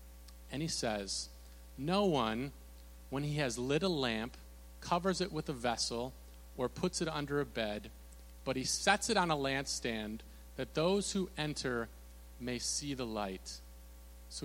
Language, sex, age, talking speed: English, male, 40-59, 160 wpm